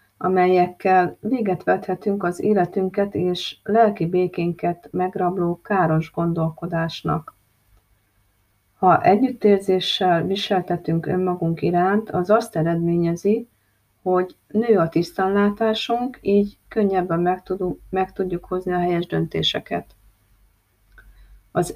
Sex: female